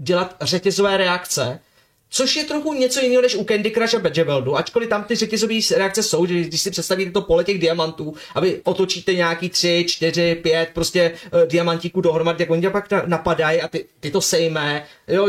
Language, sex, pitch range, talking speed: Czech, male, 165-210 Hz, 195 wpm